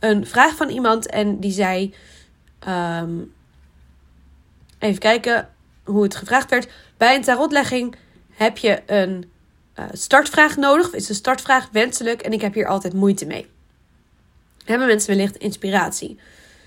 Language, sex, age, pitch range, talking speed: Dutch, female, 20-39, 180-225 Hz, 135 wpm